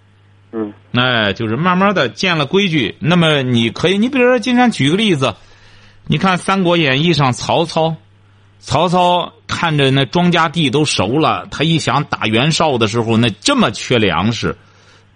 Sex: male